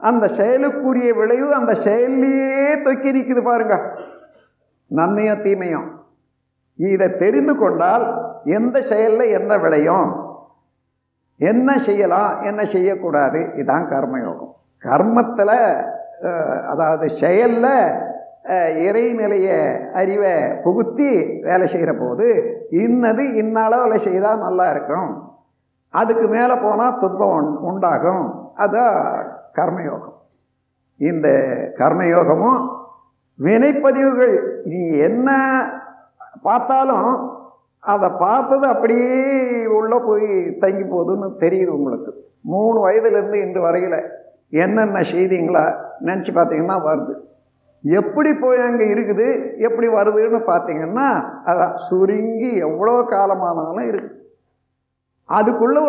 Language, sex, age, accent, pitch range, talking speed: Tamil, male, 60-79, native, 195-265 Hz, 90 wpm